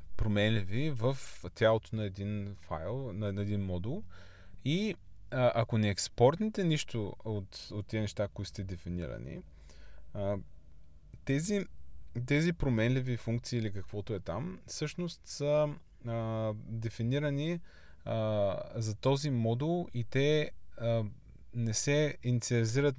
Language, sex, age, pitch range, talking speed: Bulgarian, male, 20-39, 95-130 Hz, 105 wpm